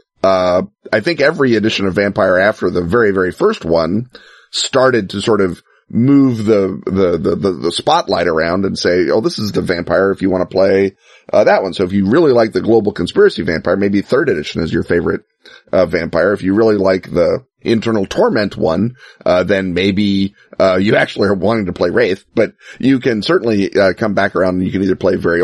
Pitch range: 95-115 Hz